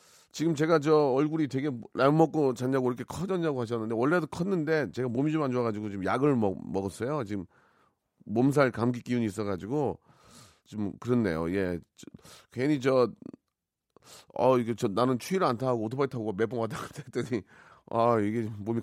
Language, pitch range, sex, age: Korean, 110-150 Hz, male, 30-49